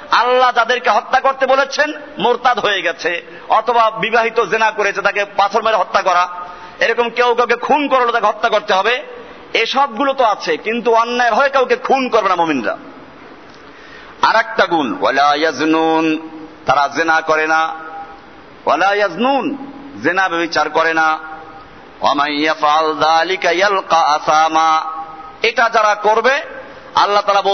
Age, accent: 50-69, native